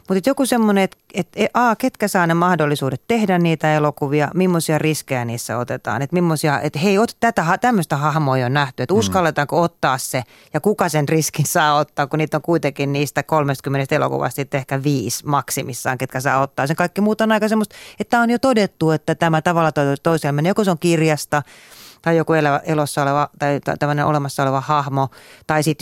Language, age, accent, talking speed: Finnish, 30-49, native, 190 wpm